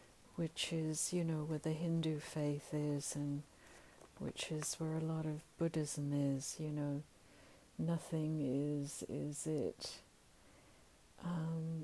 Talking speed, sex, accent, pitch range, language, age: 125 wpm, female, British, 145-165 Hz, English, 60-79